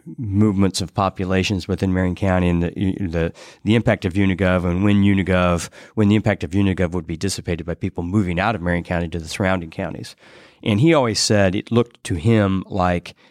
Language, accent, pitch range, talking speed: English, American, 90-100 Hz, 200 wpm